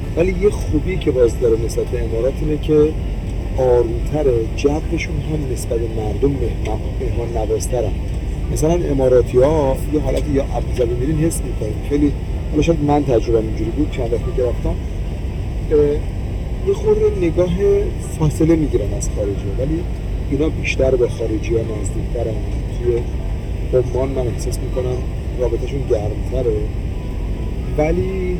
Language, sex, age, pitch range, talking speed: Persian, male, 40-59, 95-135 Hz, 135 wpm